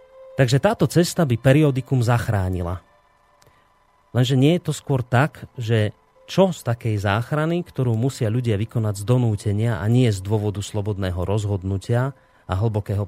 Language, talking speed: Slovak, 140 wpm